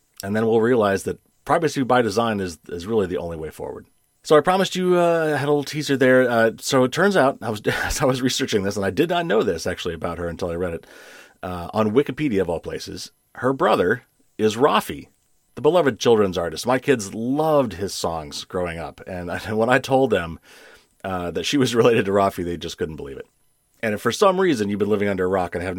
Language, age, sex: English, 40-59, male